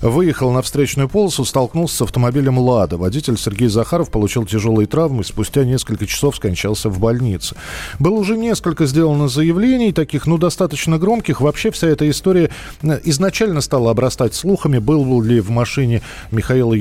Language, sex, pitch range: Russian, male, 110-150 Hz